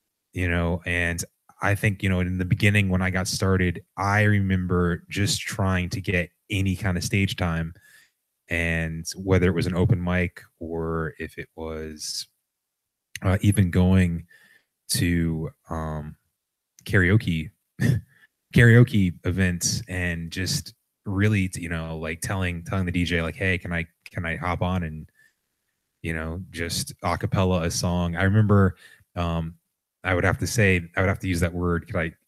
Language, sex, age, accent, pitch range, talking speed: English, male, 20-39, American, 85-100 Hz, 160 wpm